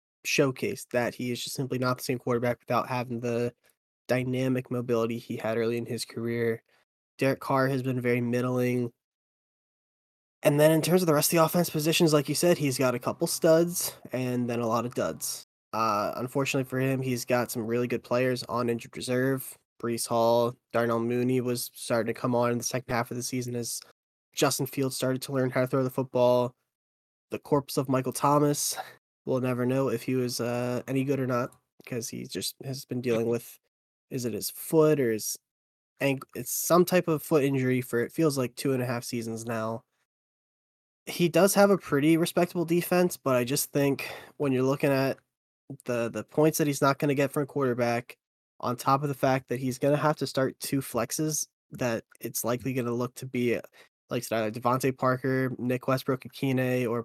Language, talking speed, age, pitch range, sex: English, 205 wpm, 10-29, 120-140 Hz, male